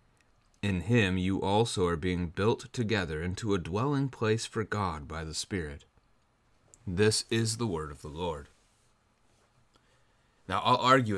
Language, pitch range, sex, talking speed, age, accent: English, 85-110 Hz, male, 145 wpm, 30-49, American